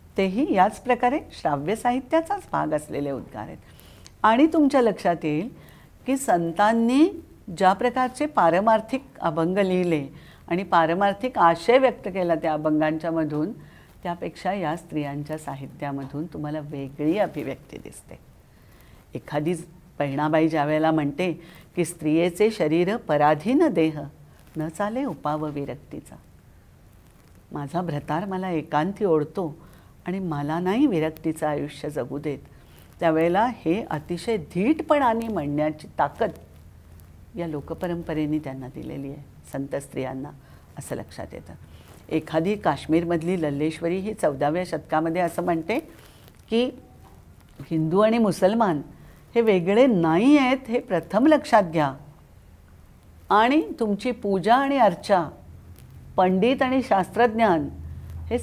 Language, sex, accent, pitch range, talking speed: Marathi, female, native, 150-215 Hz, 105 wpm